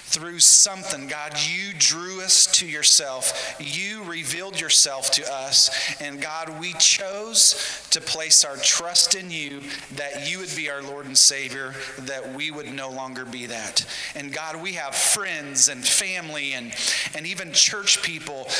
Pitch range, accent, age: 140-170 Hz, American, 40-59